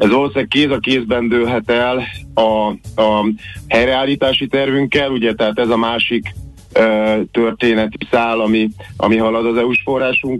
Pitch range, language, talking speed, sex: 110-125 Hz, Hungarian, 145 wpm, male